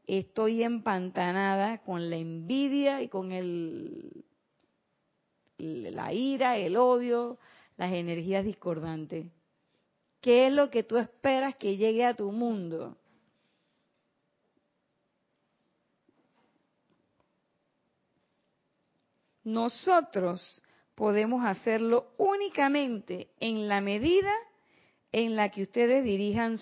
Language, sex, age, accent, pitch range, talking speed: Spanish, female, 40-59, American, 185-265 Hz, 85 wpm